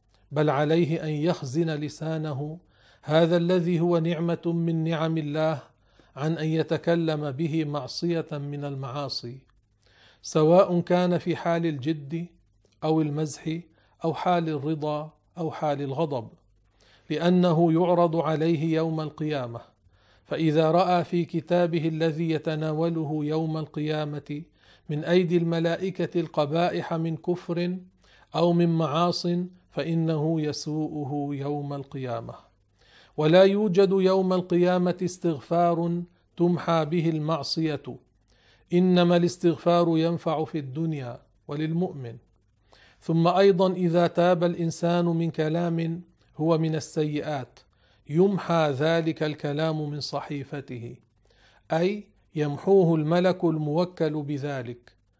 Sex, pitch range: male, 145-170 Hz